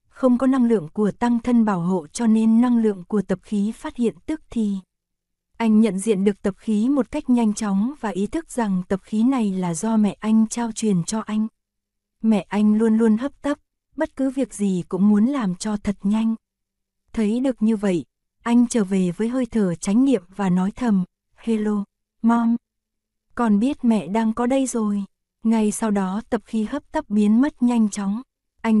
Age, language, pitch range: 20-39, Vietnamese, 200-235 Hz